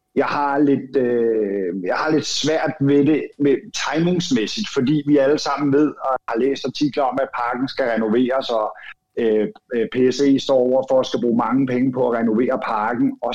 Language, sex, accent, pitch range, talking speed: Danish, male, native, 120-150 Hz, 190 wpm